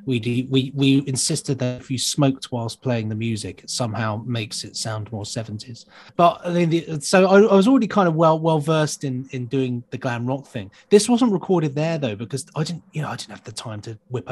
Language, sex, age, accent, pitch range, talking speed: English, male, 30-49, British, 115-160 Hz, 240 wpm